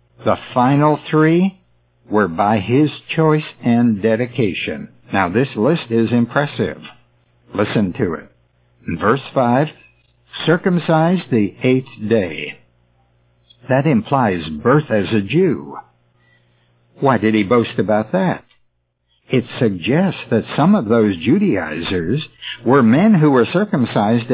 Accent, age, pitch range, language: American, 60-79, 90-150 Hz, English